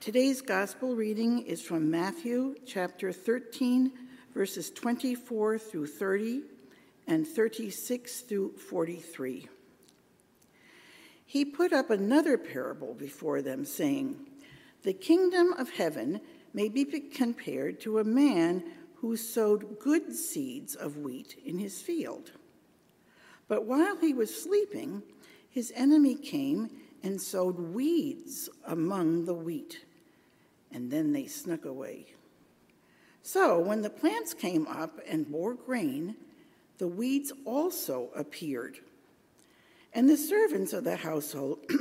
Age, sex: 60-79, female